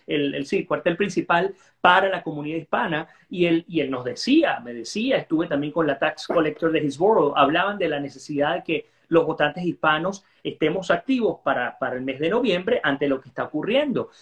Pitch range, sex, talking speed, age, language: 160-230 Hz, male, 195 wpm, 30-49, Spanish